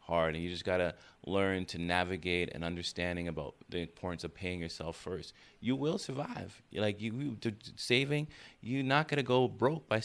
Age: 30-49